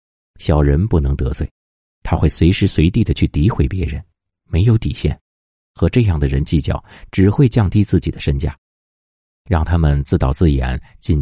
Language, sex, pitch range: Chinese, male, 70-95 Hz